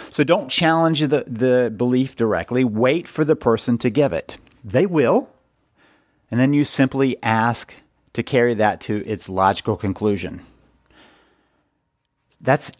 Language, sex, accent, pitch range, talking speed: English, male, American, 110-135 Hz, 135 wpm